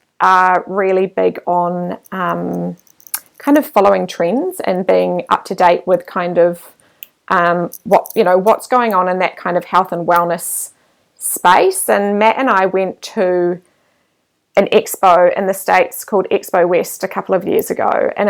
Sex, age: female, 20-39